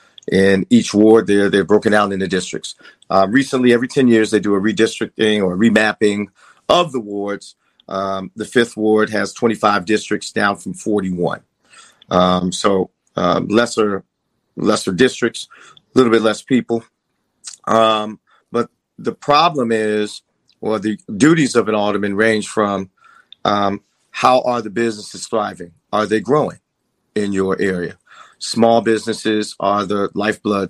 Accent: American